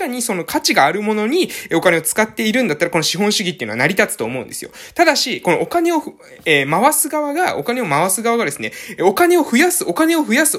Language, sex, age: Japanese, male, 20-39